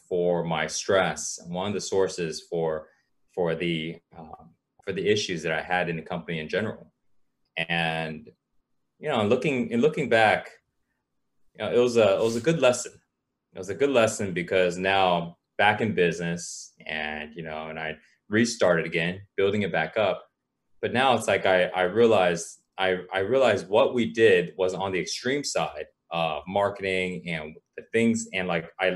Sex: male